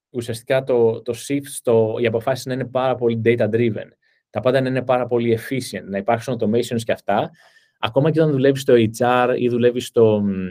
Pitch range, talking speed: 110-130 Hz, 190 wpm